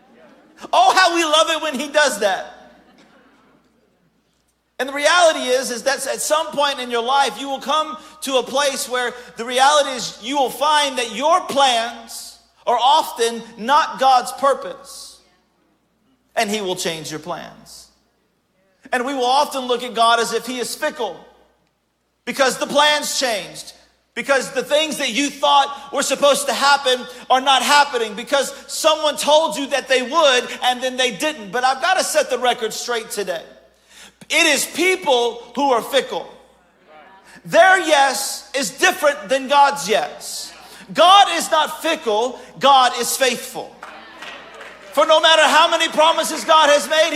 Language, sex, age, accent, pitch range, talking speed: English, male, 40-59, American, 245-300 Hz, 160 wpm